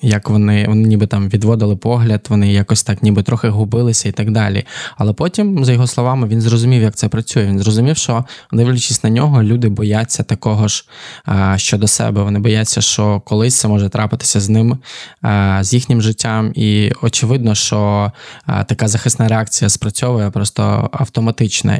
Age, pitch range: 20-39, 105-120 Hz